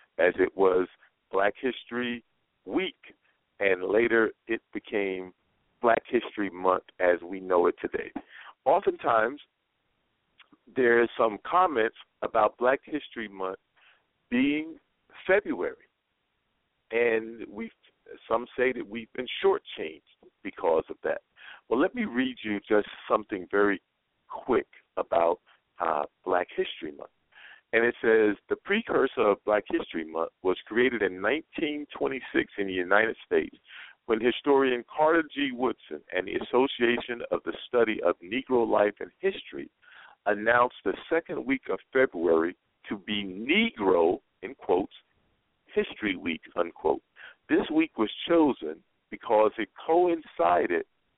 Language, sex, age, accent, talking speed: English, male, 50-69, American, 125 wpm